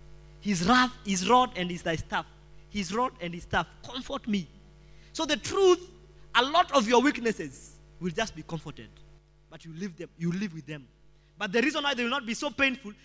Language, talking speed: English, 200 wpm